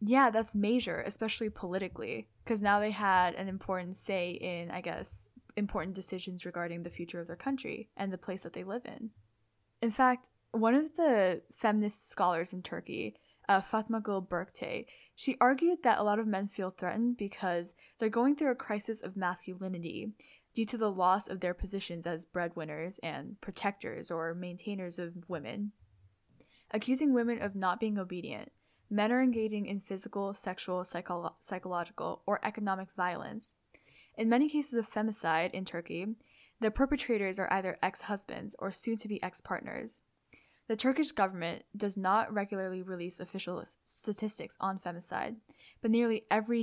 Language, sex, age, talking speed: English, female, 10-29, 155 wpm